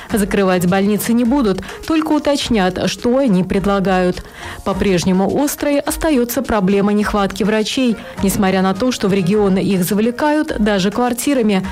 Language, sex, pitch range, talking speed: Russian, female, 195-250 Hz, 130 wpm